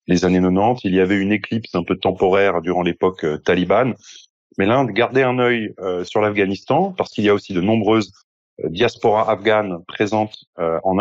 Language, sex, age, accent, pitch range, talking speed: French, male, 30-49, French, 100-120 Hz, 195 wpm